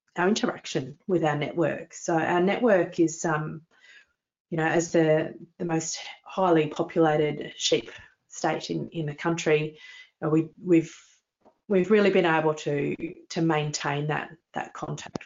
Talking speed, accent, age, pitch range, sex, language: 150 wpm, Australian, 30-49, 155-180 Hz, female, English